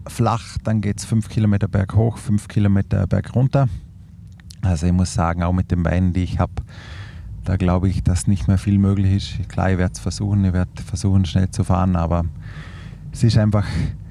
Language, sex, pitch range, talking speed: German, male, 95-105 Hz, 200 wpm